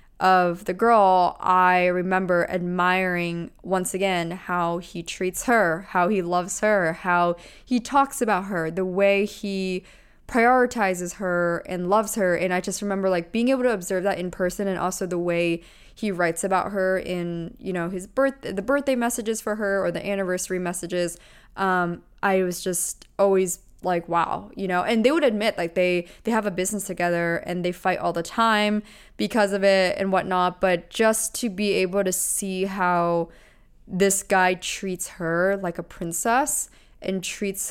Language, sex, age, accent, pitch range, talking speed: English, female, 20-39, American, 180-205 Hz, 175 wpm